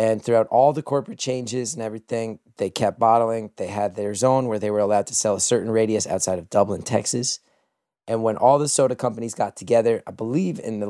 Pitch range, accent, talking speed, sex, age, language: 105-130 Hz, American, 220 wpm, male, 30-49, English